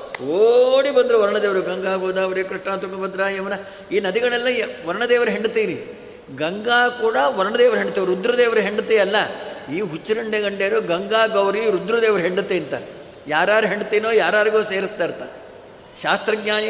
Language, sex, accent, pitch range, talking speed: Kannada, male, native, 195-240 Hz, 120 wpm